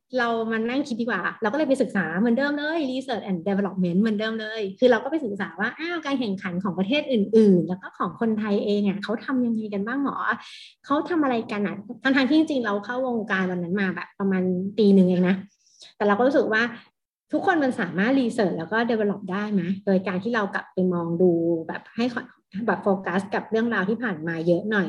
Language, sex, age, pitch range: Thai, female, 30-49, 195-250 Hz